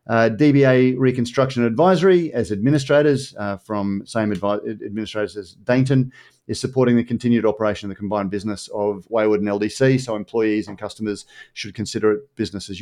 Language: English